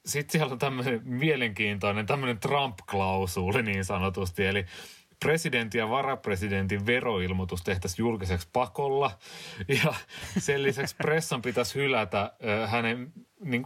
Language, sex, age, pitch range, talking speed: Finnish, male, 30-49, 90-120 Hz, 105 wpm